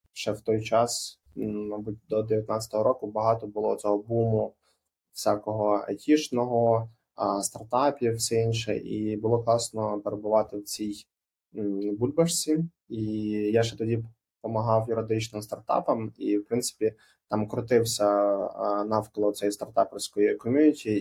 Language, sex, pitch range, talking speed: Ukrainian, male, 105-115 Hz, 115 wpm